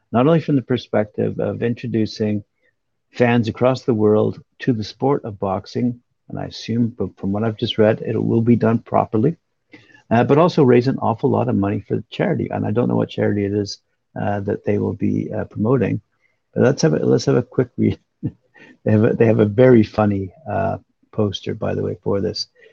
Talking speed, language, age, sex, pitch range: 210 wpm, English, 50-69, male, 105-125 Hz